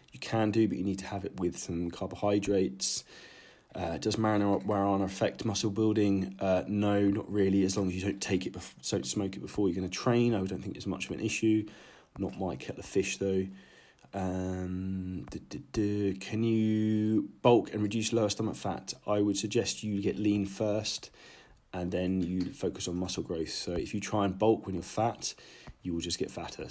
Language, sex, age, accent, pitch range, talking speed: English, male, 20-39, British, 95-105 Hz, 210 wpm